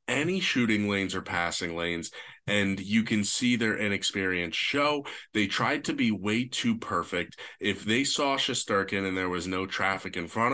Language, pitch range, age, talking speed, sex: English, 95-115 Hz, 20-39, 175 wpm, male